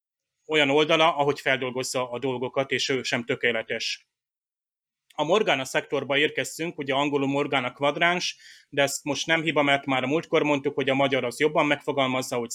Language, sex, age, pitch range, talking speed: Hungarian, male, 30-49, 135-155 Hz, 165 wpm